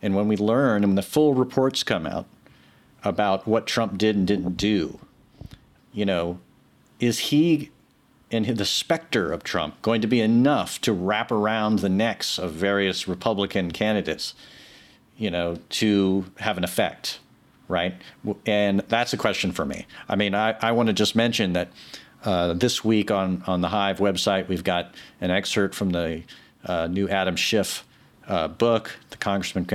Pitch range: 90-105 Hz